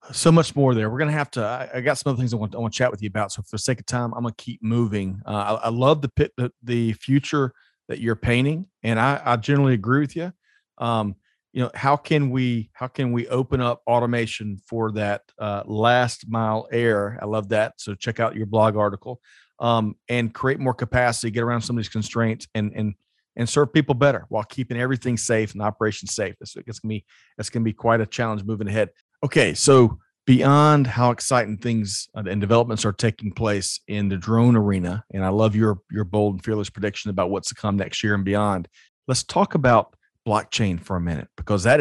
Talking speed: 225 wpm